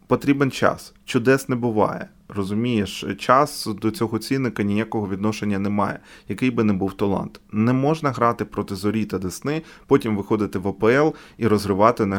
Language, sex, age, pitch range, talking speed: Ukrainian, male, 20-39, 100-135 Hz, 165 wpm